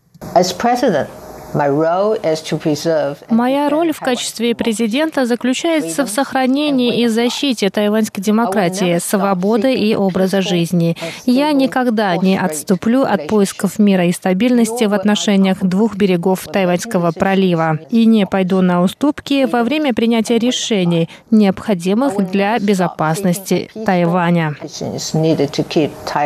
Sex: female